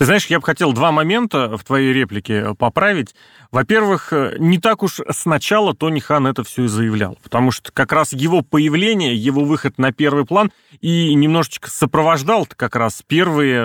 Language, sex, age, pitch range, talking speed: Russian, male, 30-49, 125-185 Hz, 170 wpm